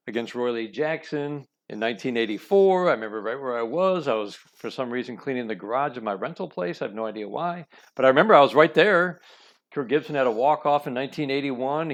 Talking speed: 215 wpm